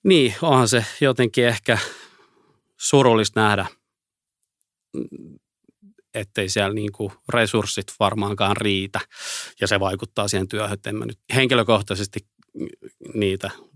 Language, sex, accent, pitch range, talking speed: Finnish, male, native, 95-110 Hz, 95 wpm